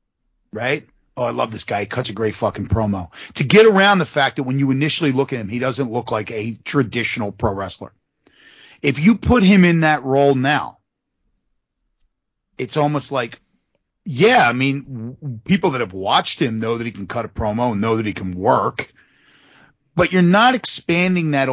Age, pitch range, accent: 40-59, 115-170 Hz, American